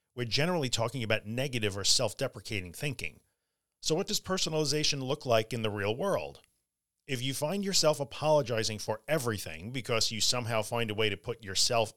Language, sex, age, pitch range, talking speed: English, male, 40-59, 105-135 Hz, 170 wpm